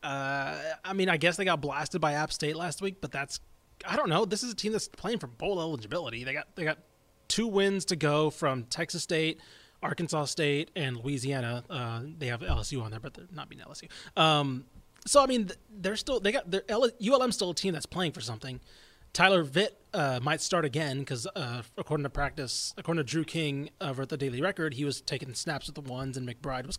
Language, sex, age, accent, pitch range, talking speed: English, male, 30-49, American, 140-180 Hz, 230 wpm